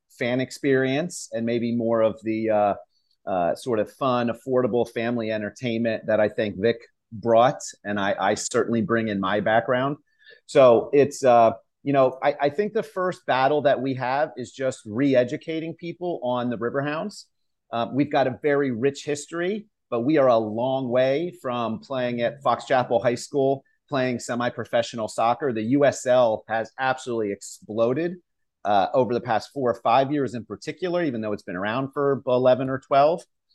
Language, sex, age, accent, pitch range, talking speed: English, male, 30-49, American, 115-140 Hz, 170 wpm